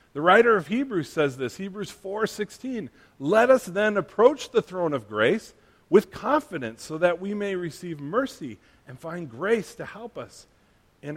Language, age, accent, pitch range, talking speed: English, 40-59, American, 135-225 Hz, 165 wpm